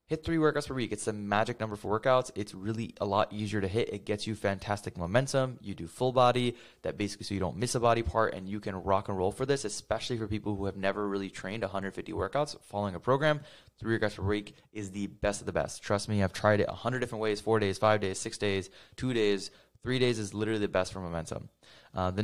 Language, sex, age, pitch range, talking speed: English, male, 20-39, 95-115 Hz, 255 wpm